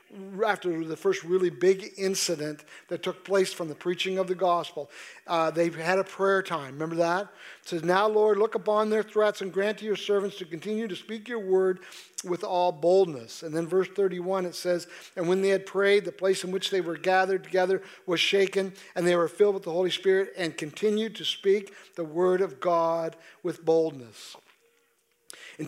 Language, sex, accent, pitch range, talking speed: English, male, American, 180-205 Hz, 200 wpm